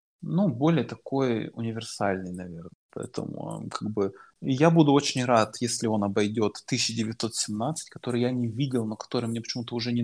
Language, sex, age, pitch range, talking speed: Ukrainian, male, 20-39, 115-135 Hz, 155 wpm